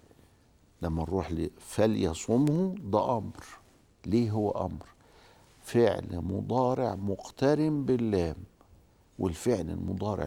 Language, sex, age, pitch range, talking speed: Arabic, male, 60-79, 90-130 Hz, 90 wpm